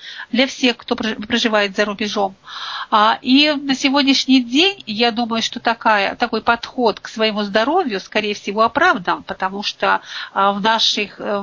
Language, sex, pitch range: Russian, female, 210-270 Hz